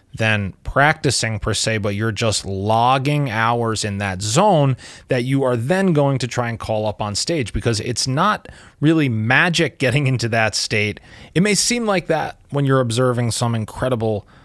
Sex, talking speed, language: male, 180 wpm, English